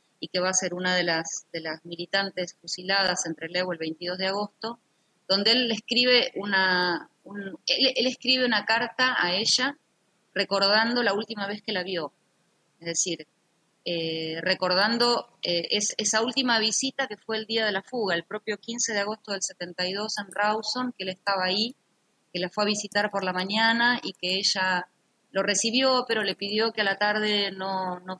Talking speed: 185 wpm